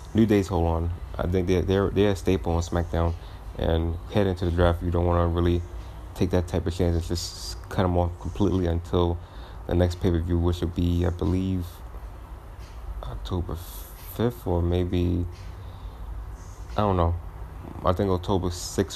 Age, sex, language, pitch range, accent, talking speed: 30-49, male, English, 85-90 Hz, American, 170 wpm